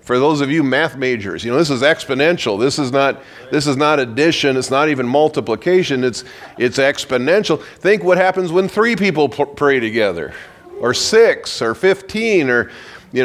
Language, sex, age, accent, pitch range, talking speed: English, male, 40-59, American, 125-170 Hz, 175 wpm